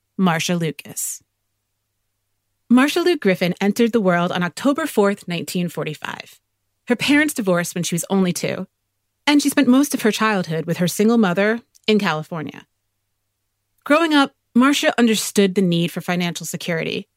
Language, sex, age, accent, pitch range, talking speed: English, female, 30-49, American, 160-230 Hz, 145 wpm